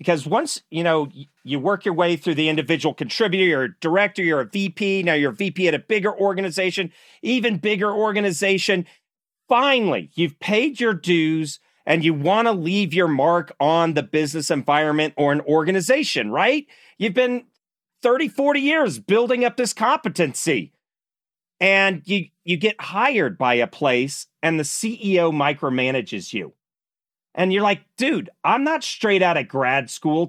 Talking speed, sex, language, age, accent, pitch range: 160 wpm, male, English, 40-59, American, 150-220 Hz